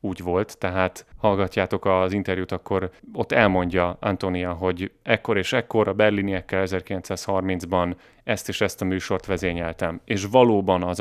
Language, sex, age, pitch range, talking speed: Hungarian, male, 30-49, 90-110 Hz, 140 wpm